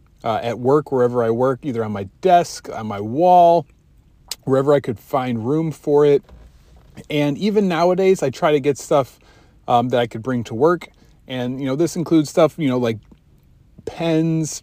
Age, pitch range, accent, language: 30-49, 120-160 Hz, American, English